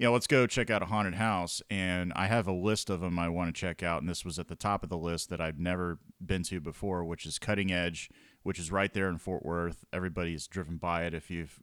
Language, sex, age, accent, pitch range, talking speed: English, male, 30-49, American, 85-100 Hz, 275 wpm